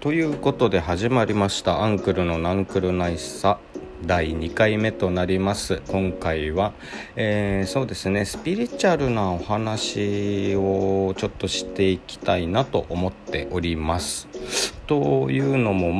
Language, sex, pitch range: Japanese, male, 85-120 Hz